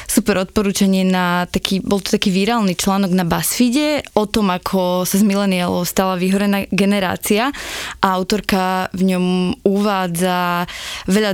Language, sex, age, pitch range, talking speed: Slovak, female, 20-39, 185-205 Hz, 140 wpm